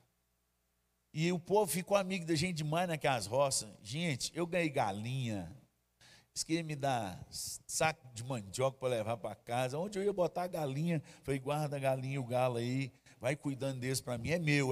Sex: male